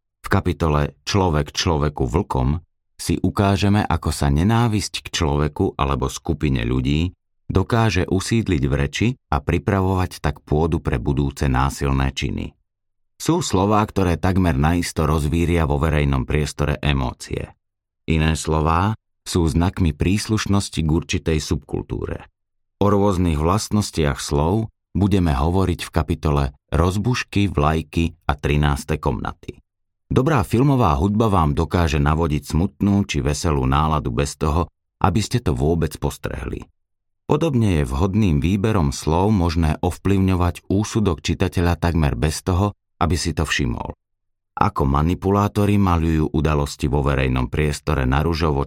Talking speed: 125 wpm